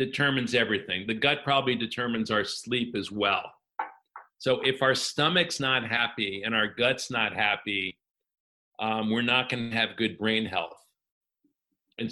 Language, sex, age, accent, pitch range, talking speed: English, male, 50-69, American, 110-130 Hz, 155 wpm